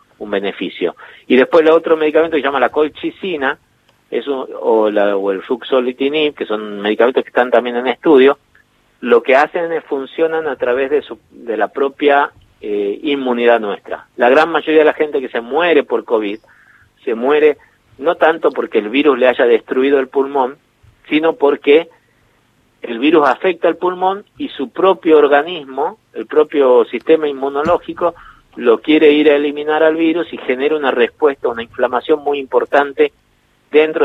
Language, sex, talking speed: Spanish, male, 170 wpm